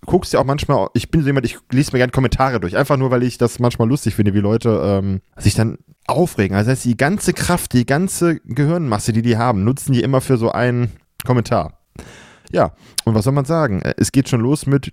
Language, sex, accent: German, male, German